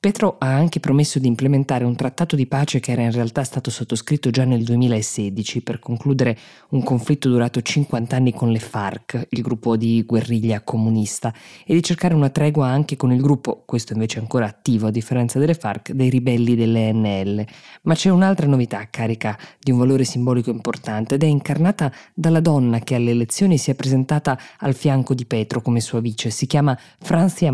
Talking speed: 190 wpm